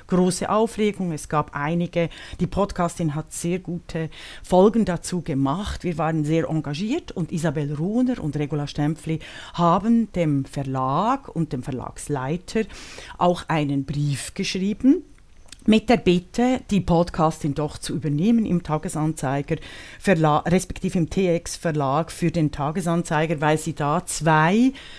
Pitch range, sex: 155-195 Hz, female